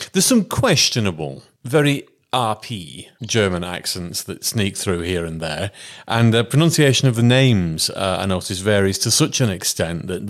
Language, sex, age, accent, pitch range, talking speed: English, male, 30-49, British, 90-120 Hz, 165 wpm